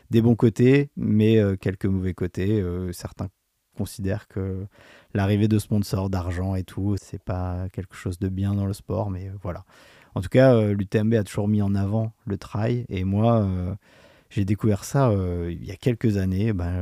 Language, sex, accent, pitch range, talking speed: French, male, French, 95-110 Hz, 195 wpm